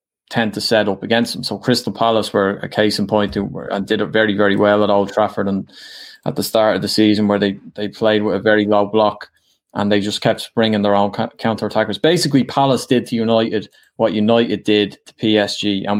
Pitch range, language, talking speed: 105-130 Hz, English, 230 wpm